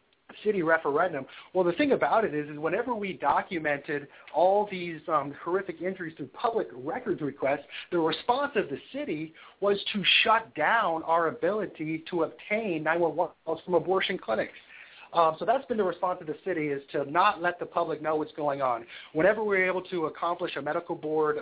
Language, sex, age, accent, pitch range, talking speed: English, male, 30-49, American, 150-180 Hz, 185 wpm